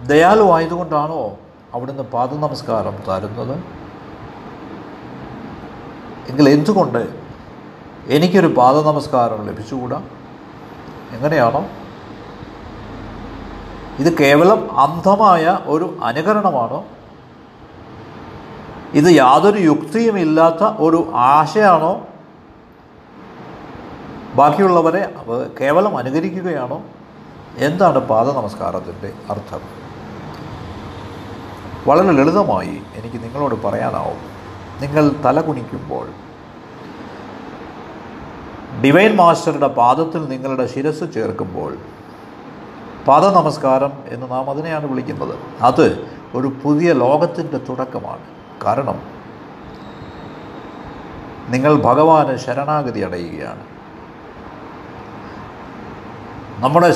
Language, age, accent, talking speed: Malayalam, 50-69, native, 65 wpm